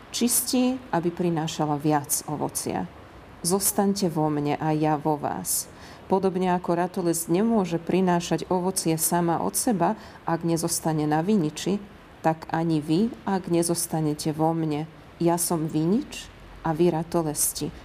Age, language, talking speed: 40-59, Slovak, 130 wpm